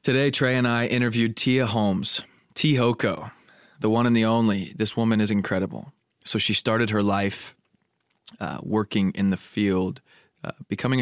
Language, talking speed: English, 160 wpm